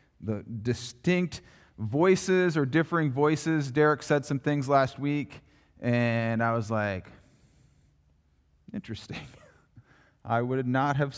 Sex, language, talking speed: male, English, 115 wpm